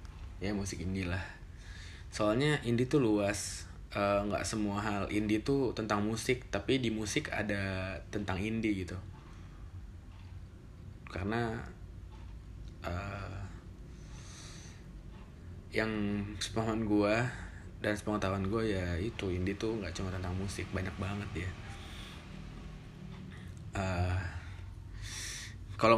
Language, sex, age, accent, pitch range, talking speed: Indonesian, male, 20-39, native, 95-120 Hz, 100 wpm